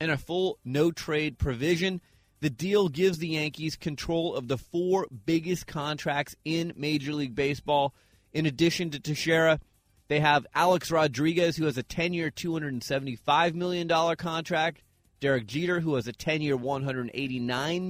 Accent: American